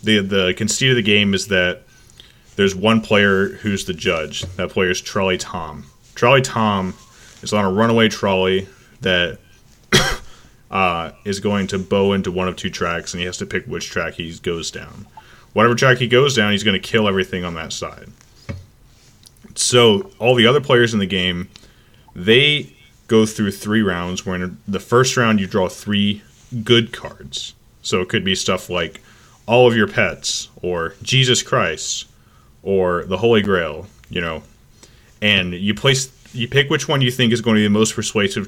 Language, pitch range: English, 95-115 Hz